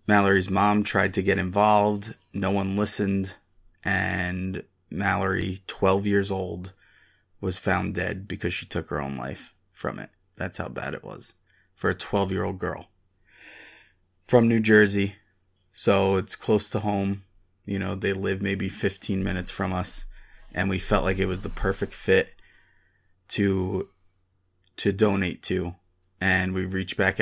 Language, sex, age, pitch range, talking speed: English, male, 20-39, 95-105 Hz, 150 wpm